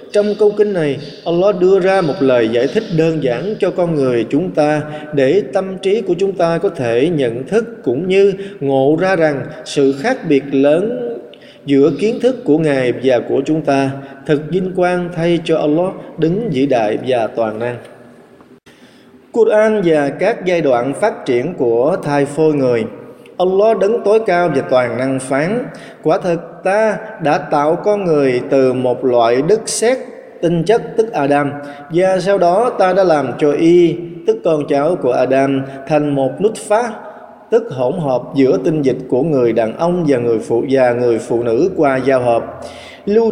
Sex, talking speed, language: male, 180 wpm, Vietnamese